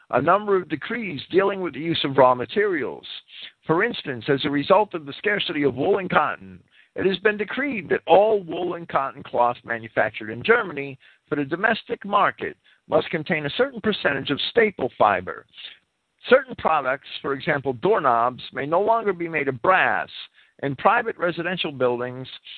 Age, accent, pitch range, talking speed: 50-69, American, 140-205 Hz, 170 wpm